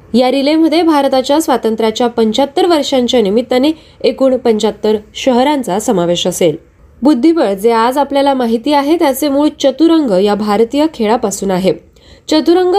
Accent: native